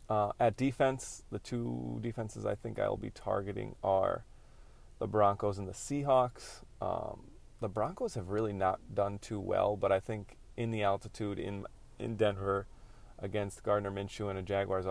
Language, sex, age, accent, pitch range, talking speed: English, male, 30-49, American, 95-115 Hz, 165 wpm